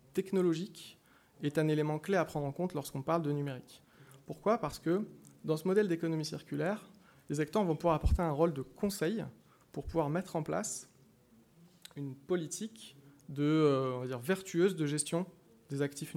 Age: 20-39